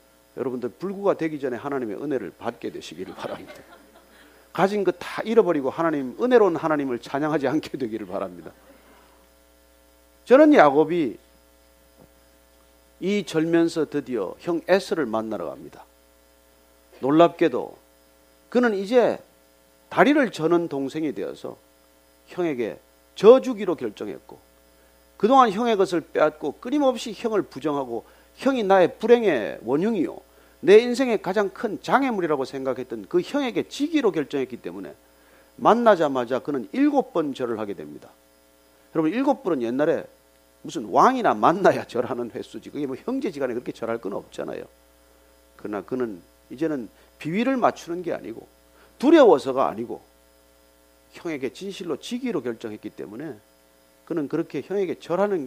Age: 40-59